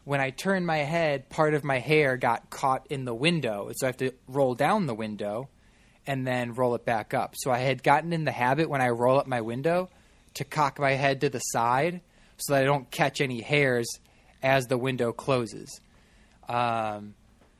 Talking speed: 205 wpm